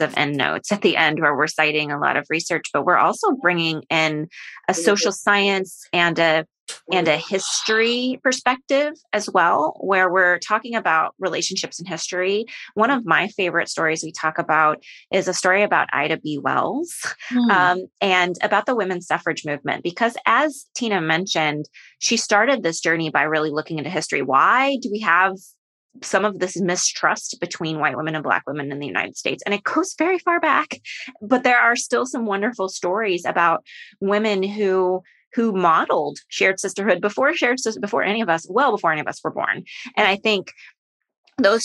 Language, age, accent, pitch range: English, 20-39, American, 165-220 Hz